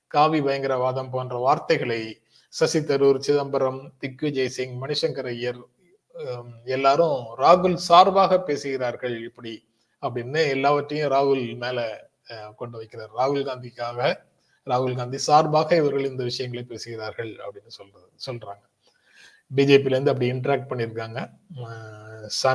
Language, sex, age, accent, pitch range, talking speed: Tamil, male, 30-49, native, 120-150 Hz, 105 wpm